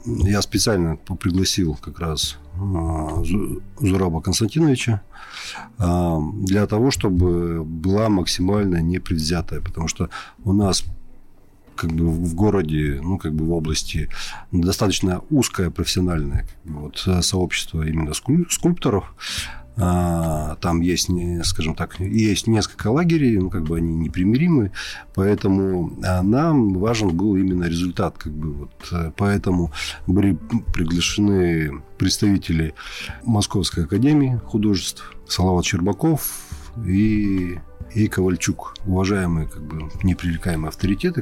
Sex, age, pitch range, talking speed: male, 40-59, 85-100 Hz, 110 wpm